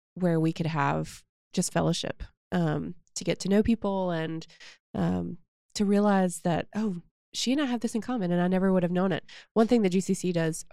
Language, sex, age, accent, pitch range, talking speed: English, female, 20-39, American, 170-195 Hz, 205 wpm